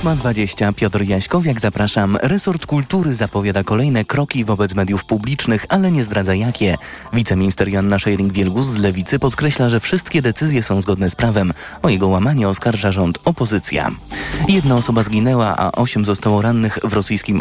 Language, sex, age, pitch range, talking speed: Polish, male, 30-49, 95-130 Hz, 155 wpm